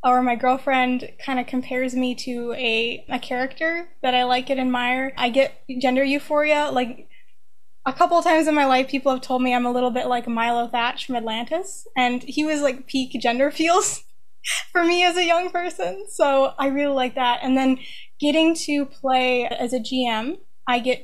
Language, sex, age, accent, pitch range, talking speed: English, female, 10-29, American, 245-285 Hz, 195 wpm